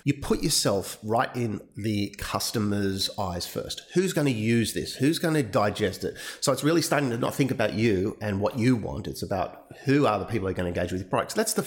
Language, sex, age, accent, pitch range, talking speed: English, male, 40-59, Australian, 100-140 Hz, 245 wpm